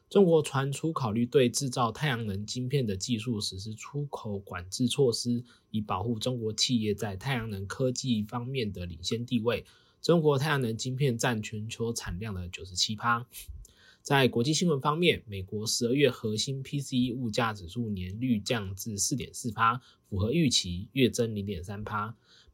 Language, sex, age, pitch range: Chinese, male, 20-39, 105-125 Hz